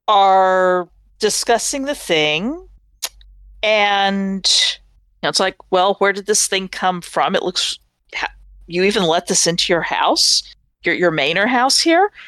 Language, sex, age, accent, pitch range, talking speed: English, female, 40-59, American, 170-235 Hz, 145 wpm